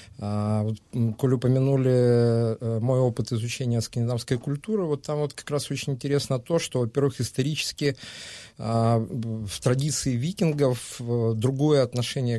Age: 40-59